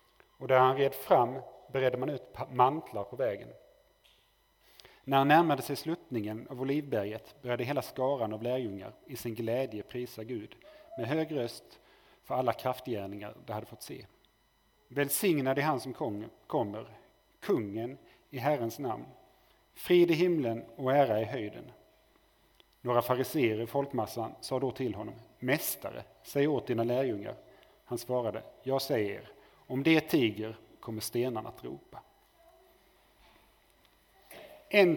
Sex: male